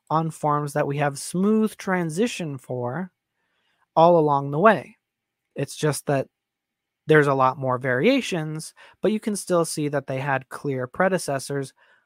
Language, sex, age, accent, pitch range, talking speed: English, male, 20-39, American, 135-165 Hz, 150 wpm